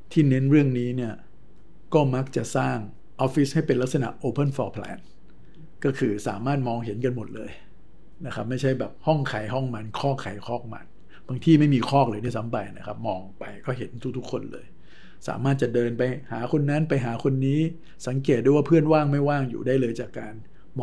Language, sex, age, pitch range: Thai, male, 60-79, 115-140 Hz